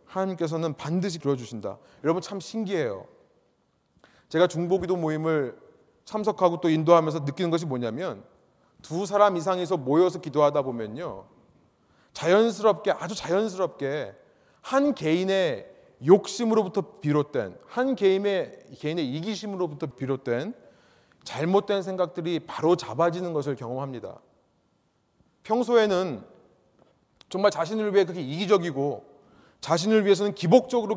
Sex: male